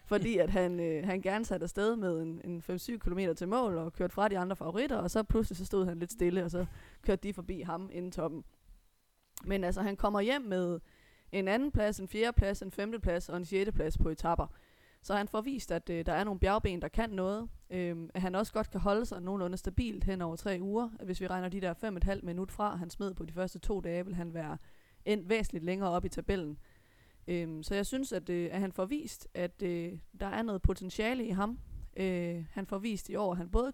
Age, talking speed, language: 20-39, 235 wpm, Danish